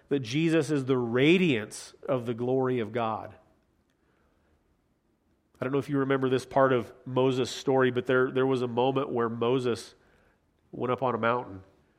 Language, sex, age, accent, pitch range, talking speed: English, male, 40-59, American, 120-150 Hz, 170 wpm